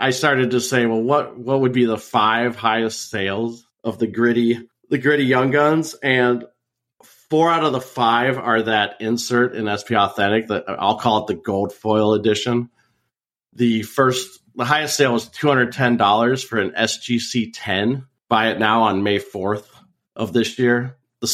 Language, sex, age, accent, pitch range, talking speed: English, male, 40-59, American, 110-130 Hz, 180 wpm